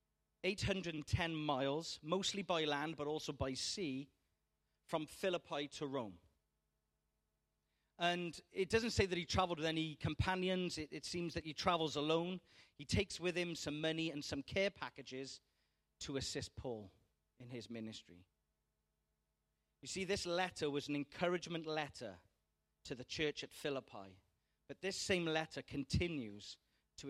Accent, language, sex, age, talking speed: British, English, male, 40-59, 145 wpm